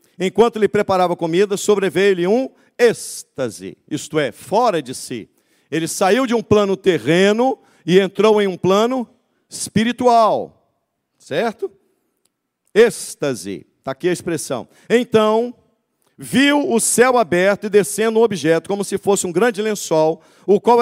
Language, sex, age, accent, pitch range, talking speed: Portuguese, male, 50-69, Brazilian, 165-230 Hz, 135 wpm